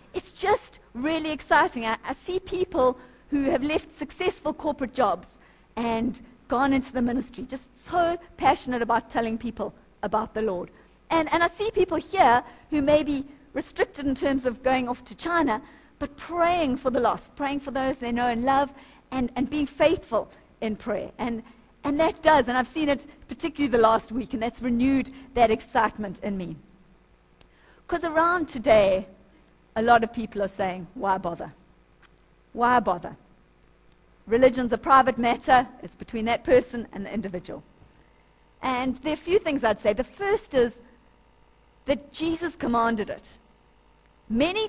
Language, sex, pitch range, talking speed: English, female, 230-305 Hz, 165 wpm